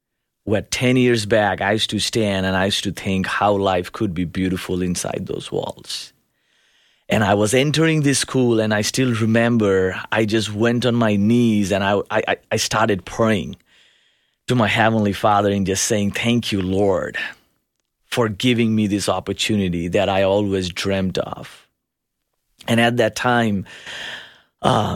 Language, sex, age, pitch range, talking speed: English, male, 30-49, 100-115 Hz, 160 wpm